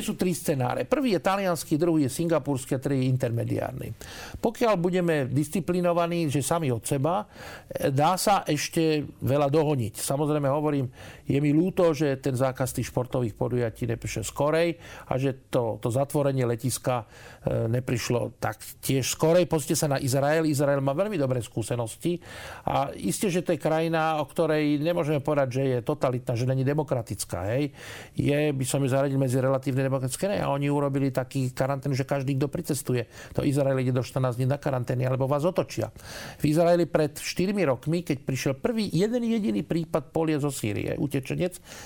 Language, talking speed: Slovak, 165 wpm